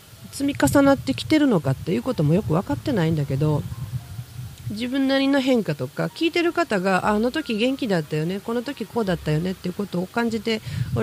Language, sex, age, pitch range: Japanese, female, 40-59, 145-225 Hz